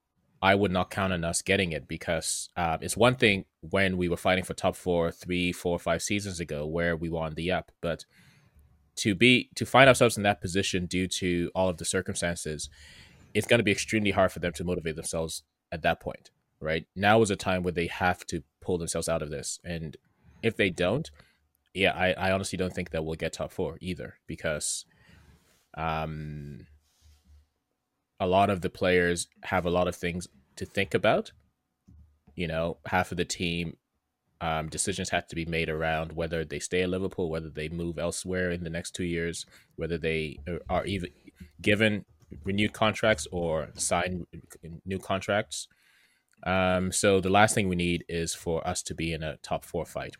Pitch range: 80-95 Hz